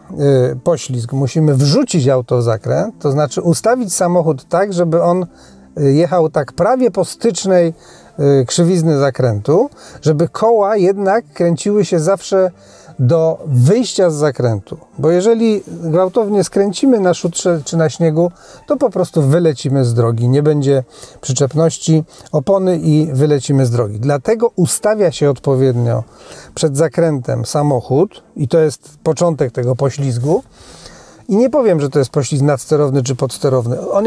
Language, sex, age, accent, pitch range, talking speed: Polish, male, 40-59, native, 135-180 Hz, 135 wpm